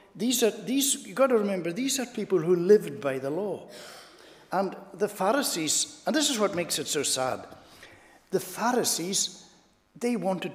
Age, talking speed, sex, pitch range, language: 60-79, 170 wpm, male, 160-215 Hz, English